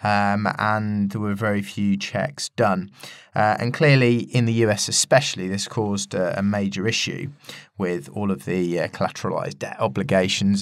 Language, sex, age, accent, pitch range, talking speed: English, male, 20-39, British, 100-130 Hz, 165 wpm